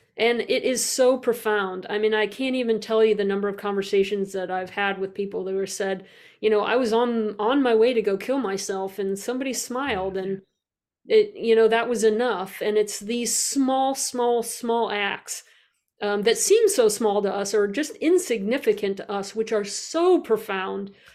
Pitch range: 200-240 Hz